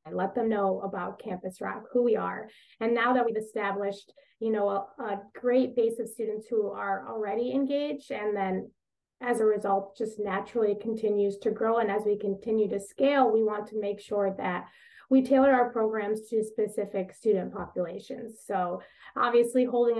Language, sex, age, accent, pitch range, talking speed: English, female, 20-39, American, 200-235 Hz, 175 wpm